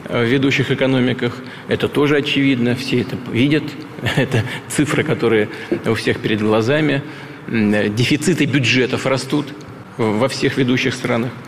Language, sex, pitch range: Russian, male, 115-140 Hz